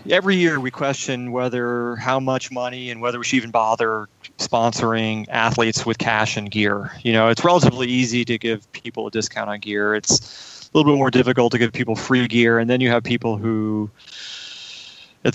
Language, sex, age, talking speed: English, male, 30-49, 195 wpm